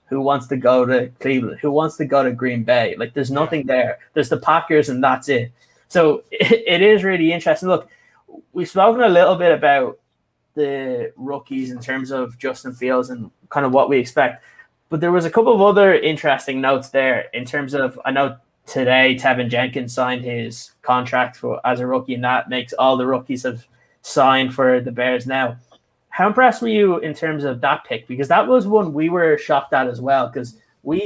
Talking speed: 205 wpm